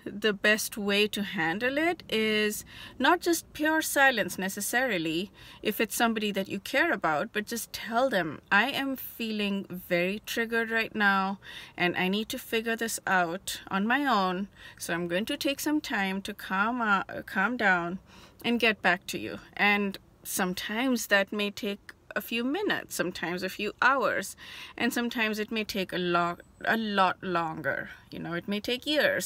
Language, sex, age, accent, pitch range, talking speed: English, female, 30-49, Indian, 180-235 Hz, 175 wpm